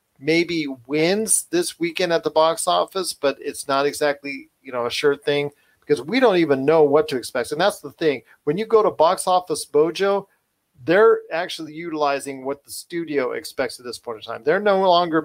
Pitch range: 140-170 Hz